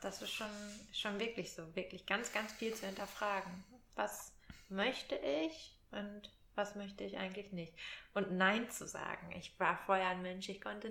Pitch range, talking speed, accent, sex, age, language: 180-205 Hz, 175 wpm, German, female, 20-39, German